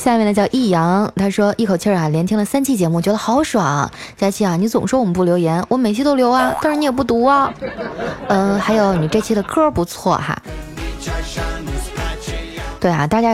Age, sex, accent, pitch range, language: 20-39, female, native, 175-235 Hz, Chinese